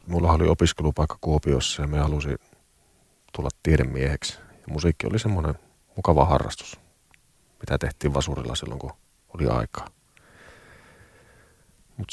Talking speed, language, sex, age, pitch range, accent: 115 wpm, Finnish, male, 40-59, 75-90 Hz, native